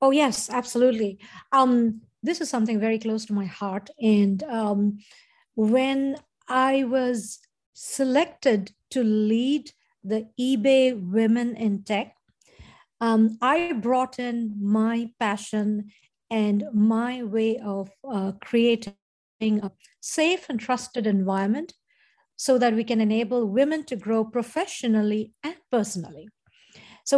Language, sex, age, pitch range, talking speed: English, female, 50-69, 210-260 Hz, 120 wpm